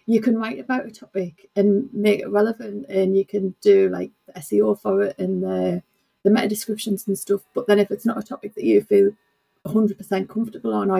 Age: 30-49